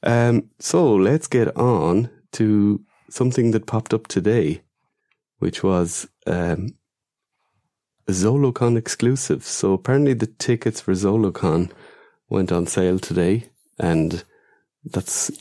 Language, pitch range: English, 90-110 Hz